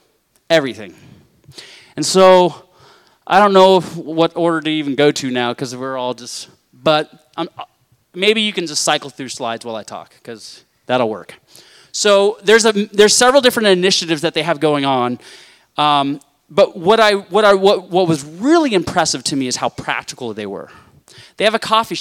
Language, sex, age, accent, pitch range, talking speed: English, male, 20-39, American, 135-190 Hz, 180 wpm